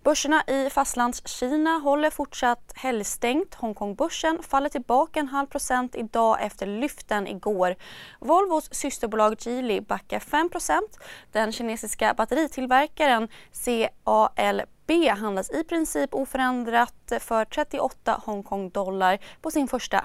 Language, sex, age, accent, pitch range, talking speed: Swedish, female, 20-39, native, 225-295 Hz, 110 wpm